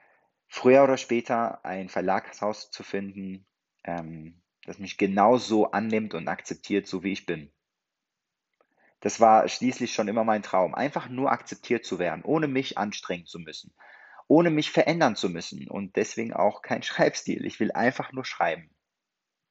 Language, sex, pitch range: German, male, 100-125 Hz